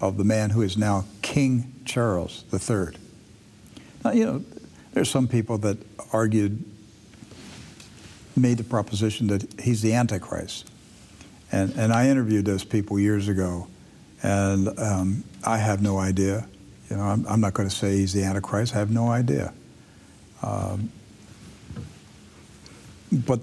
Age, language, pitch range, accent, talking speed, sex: 60-79, English, 105-130 Hz, American, 140 wpm, male